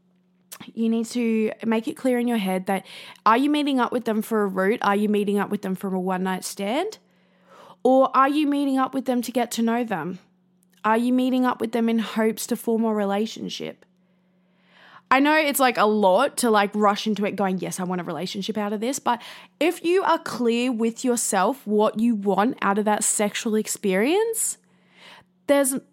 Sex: female